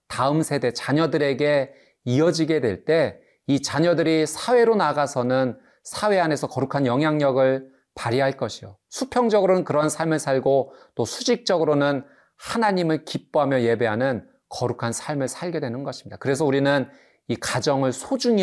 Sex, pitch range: male, 115-160 Hz